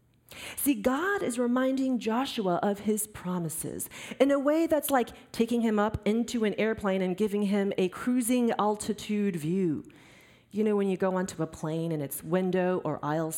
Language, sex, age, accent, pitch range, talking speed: English, female, 30-49, American, 180-245 Hz, 175 wpm